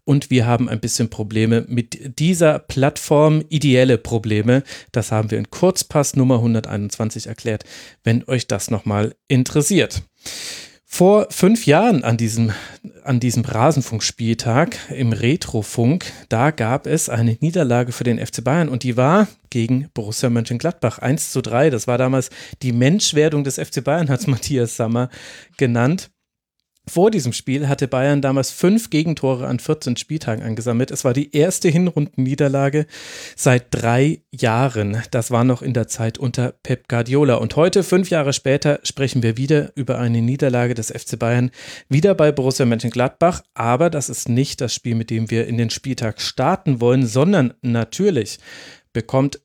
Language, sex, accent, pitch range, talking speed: German, male, German, 120-150 Hz, 155 wpm